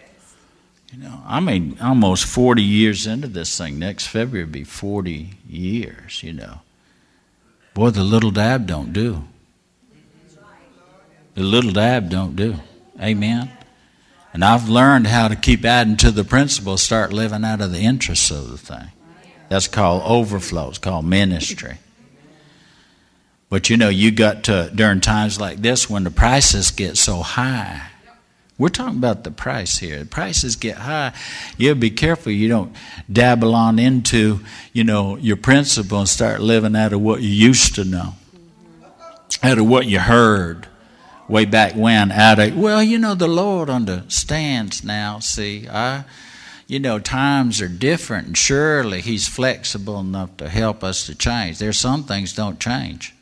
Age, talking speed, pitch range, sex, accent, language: 60-79, 160 wpm, 95-120 Hz, male, American, English